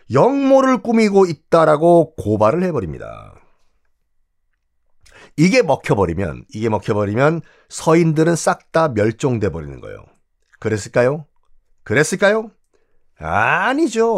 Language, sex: Korean, male